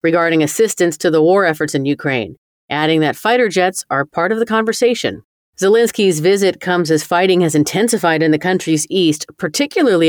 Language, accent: English, American